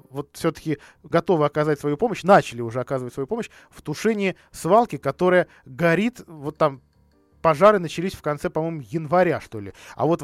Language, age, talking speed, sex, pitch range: Russian, 20-39, 165 wpm, male, 140-185 Hz